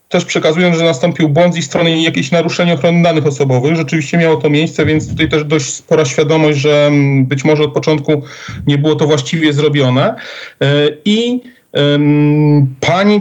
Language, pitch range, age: Polish, 145-175 Hz, 40-59